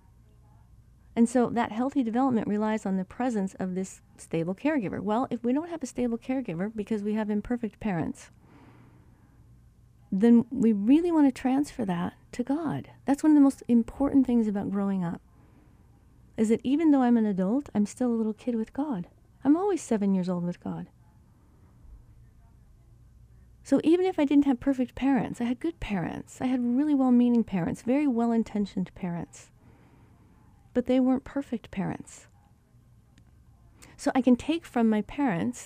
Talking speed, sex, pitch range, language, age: 165 wpm, female, 195-255 Hz, English, 40-59